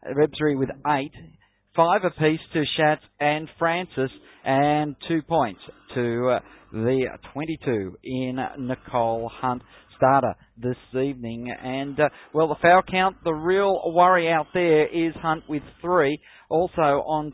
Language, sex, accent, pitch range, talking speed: English, male, Australian, 130-160 Hz, 135 wpm